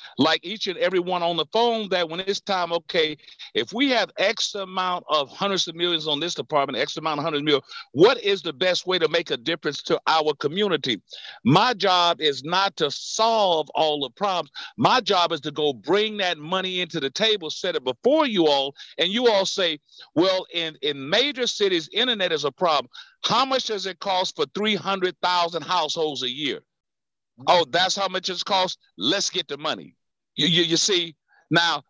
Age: 50-69